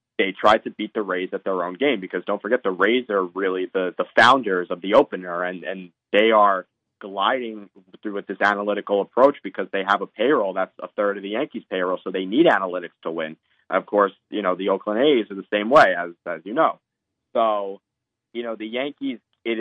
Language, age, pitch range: English, 30-49, 95-120 Hz